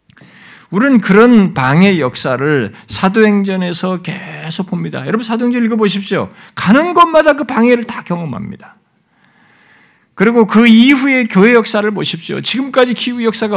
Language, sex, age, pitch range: Korean, male, 50-69, 185-250 Hz